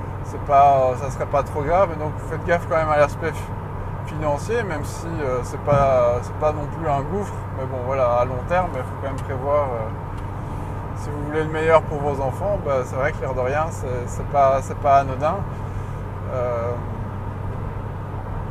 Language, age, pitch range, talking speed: French, 20-39, 105-150 Hz, 215 wpm